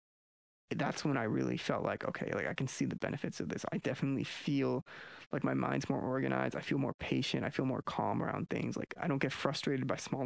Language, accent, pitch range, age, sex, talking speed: English, American, 125-145 Hz, 20-39, male, 235 wpm